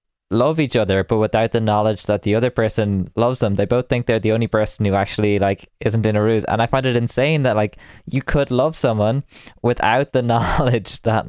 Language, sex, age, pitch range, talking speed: English, male, 10-29, 105-125 Hz, 225 wpm